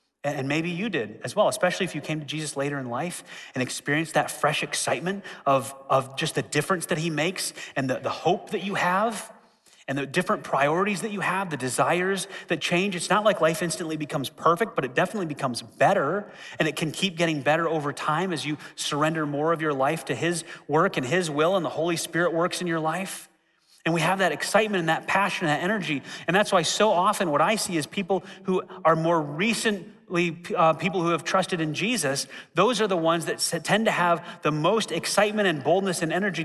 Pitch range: 165-220 Hz